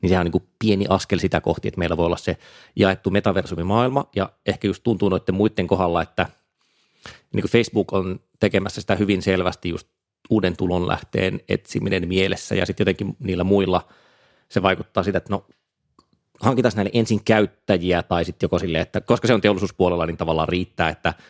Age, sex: 30-49, male